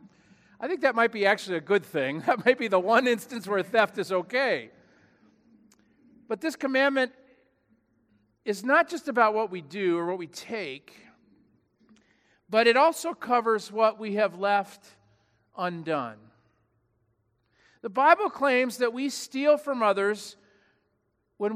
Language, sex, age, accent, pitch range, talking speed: English, male, 50-69, American, 180-235 Hz, 140 wpm